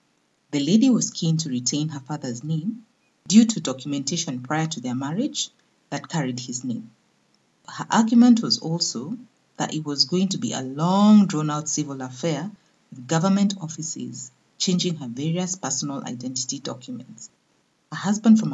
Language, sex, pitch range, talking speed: English, female, 135-215 Hz, 150 wpm